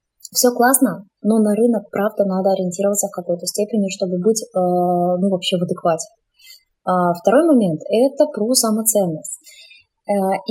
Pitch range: 195-235 Hz